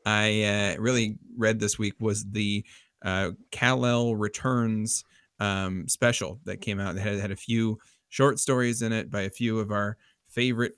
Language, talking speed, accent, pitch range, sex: English, 175 wpm, American, 105-120 Hz, male